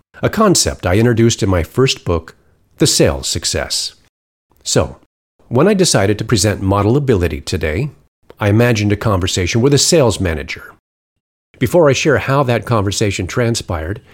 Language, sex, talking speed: English, male, 150 wpm